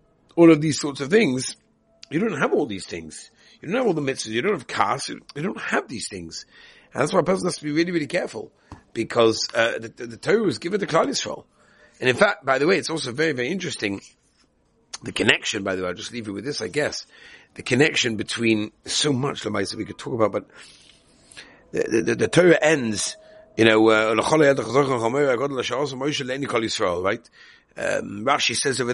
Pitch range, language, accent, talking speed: 115-160 Hz, English, British, 205 wpm